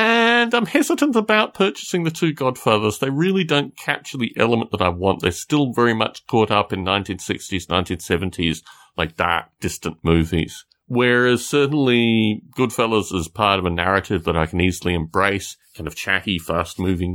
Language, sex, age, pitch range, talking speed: English, male, 30-49, 95-140 Hz, 165 wpm